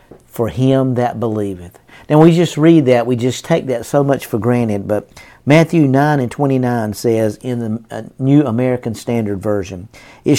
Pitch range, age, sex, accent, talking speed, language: 120-150 Hz, 50-69, male, American, 180 wpm, English